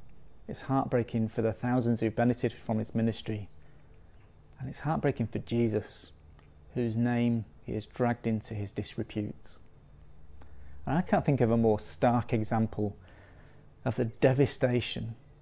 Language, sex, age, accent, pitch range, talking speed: English, male, 30-49, British, 105-125 Hz, 135 wpm